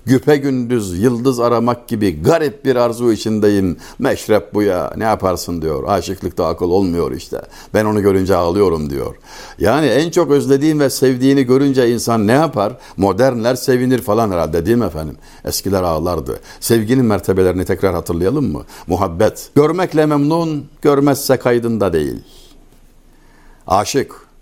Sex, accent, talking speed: male, native, 135 wpm